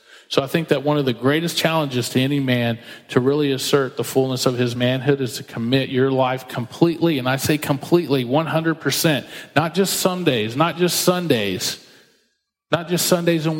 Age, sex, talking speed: 40-59, male, 185 wpm